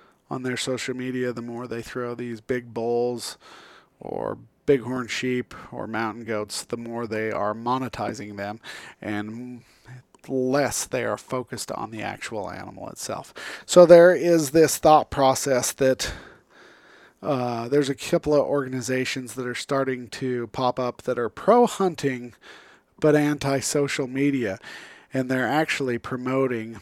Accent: American